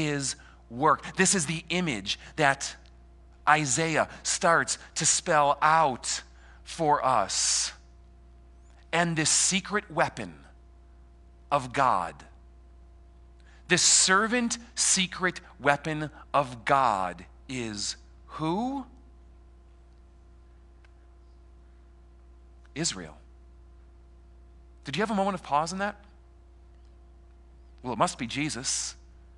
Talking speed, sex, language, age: 90 wpm, male, English, 40-59